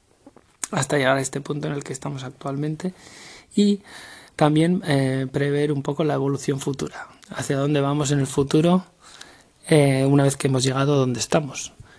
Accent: Spanish